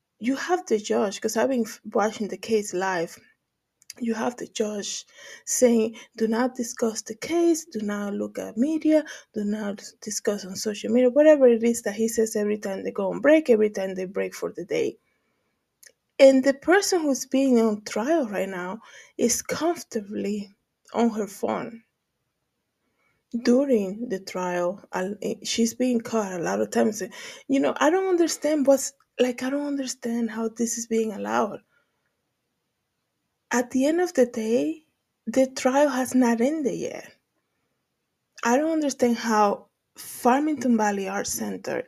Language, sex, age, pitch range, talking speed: English, female, 20-39, 210-265 Hz, 160 wpm